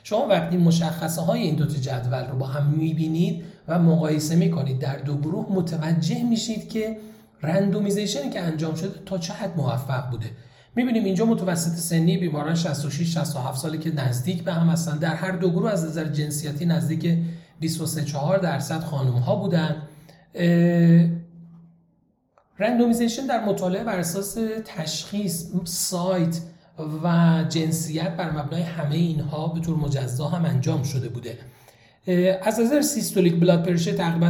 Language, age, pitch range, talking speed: Persian, 40-59, 150-185 Hz, 140 wpm